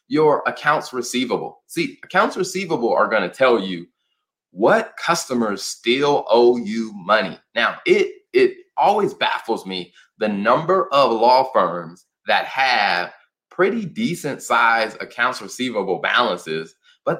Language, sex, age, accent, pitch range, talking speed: English, male, 20-39, American, 120-190 Hz, 130 wpm